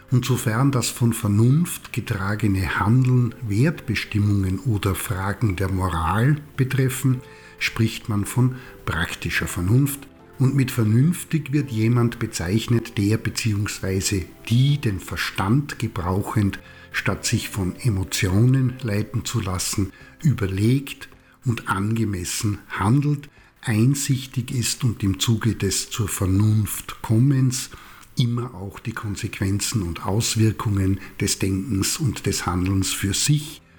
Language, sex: German, male